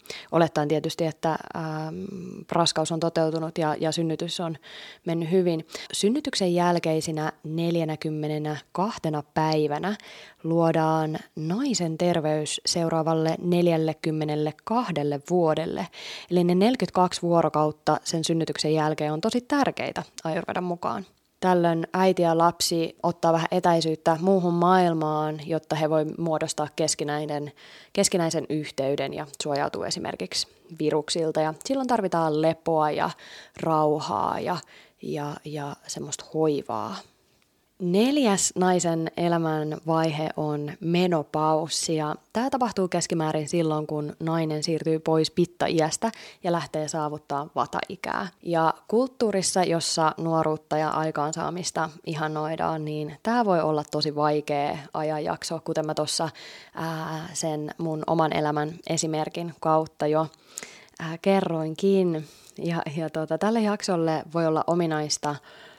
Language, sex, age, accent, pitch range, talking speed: Finnish, female, 20-39, native, 155-175 Hz, 105 wpm